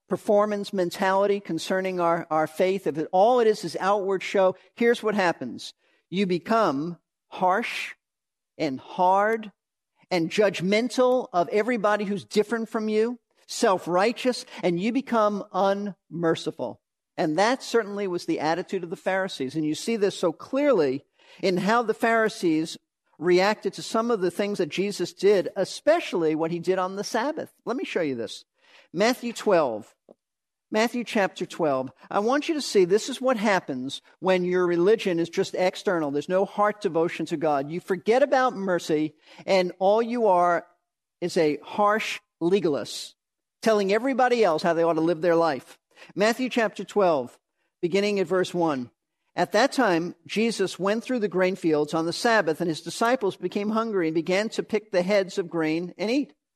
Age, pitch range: 50-69, 175-220 Hz